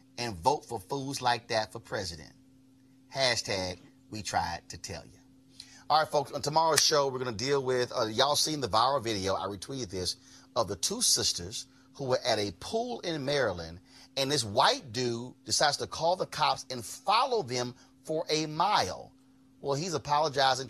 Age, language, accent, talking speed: 30-49, English, American, 180 wpm